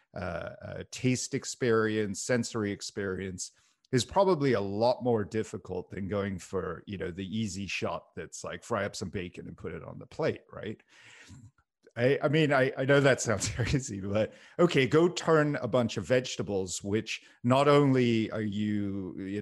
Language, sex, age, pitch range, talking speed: English, male, 40-59, 100-130 Hz, 175 wpm